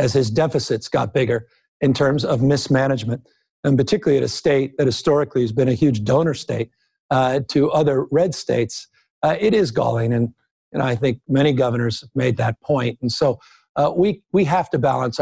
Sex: male